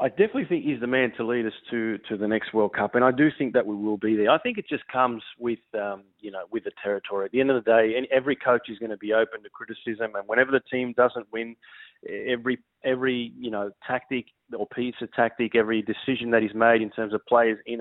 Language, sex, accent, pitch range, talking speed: English, male, Australian, 110-130 Hz, 260 wpm